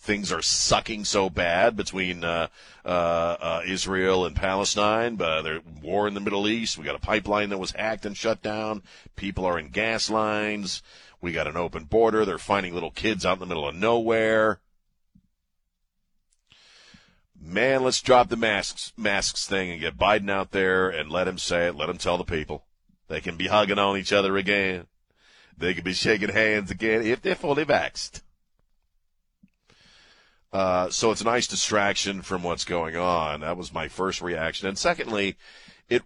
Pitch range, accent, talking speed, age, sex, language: 90-115 Hz, American, 180 wpm, 40-59, male, English